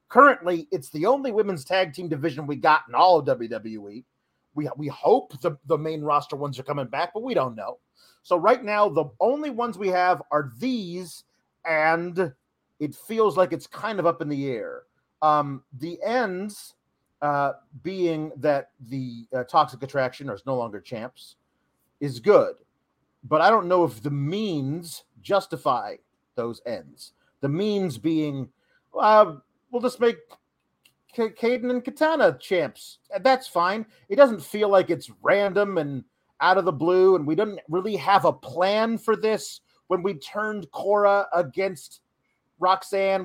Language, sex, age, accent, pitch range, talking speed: English, male, 40-59, American, 145-205 Hz, 160 wpm